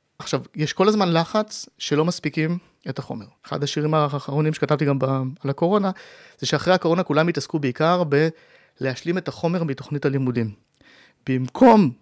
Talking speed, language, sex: 145 wpm, Hebrew, male